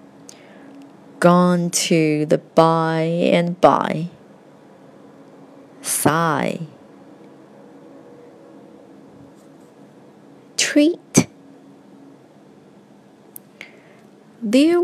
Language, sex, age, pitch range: Chinese, female, 30-49, 160-215 Hz